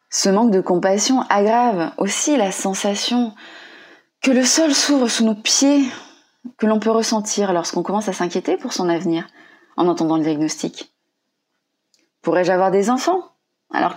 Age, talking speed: 20-39, 150 wpm